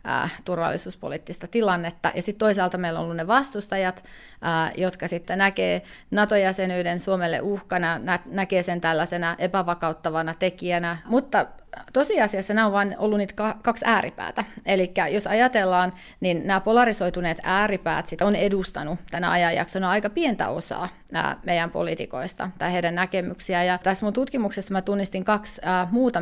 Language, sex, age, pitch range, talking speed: Finnish, female, 30-49, 170-200 Hz, 135 wpm